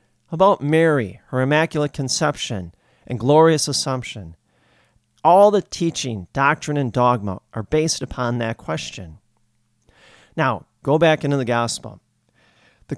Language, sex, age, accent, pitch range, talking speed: English, male, 40-59, American, 115-155 Hz, 120 wpm